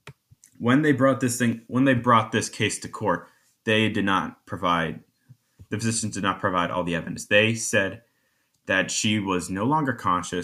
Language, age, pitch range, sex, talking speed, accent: English, 20-39, 95-125 Hz, male, 185 wpm, American